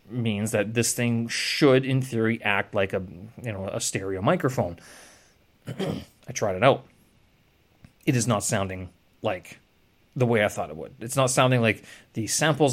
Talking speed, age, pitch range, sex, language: 170 wpm, 30-49, 105-130 Hz, male, English